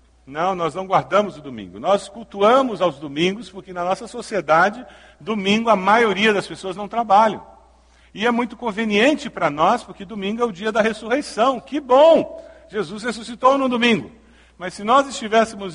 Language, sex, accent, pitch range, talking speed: Portuguese, male, Brazilian, 155-240 Hz, 170 wpm